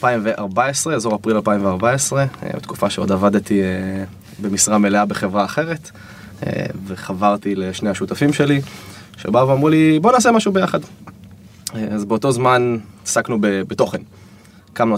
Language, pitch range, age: Hebrew, 100-135 Hz, 20-39